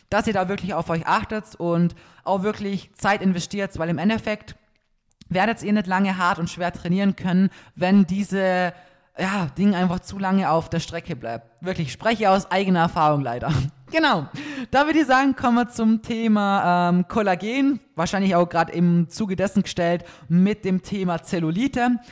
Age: 20-39